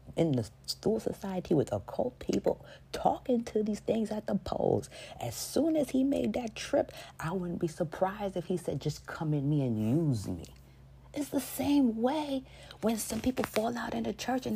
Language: English